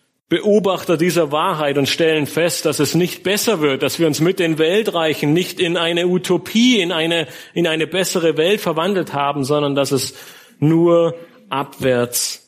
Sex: male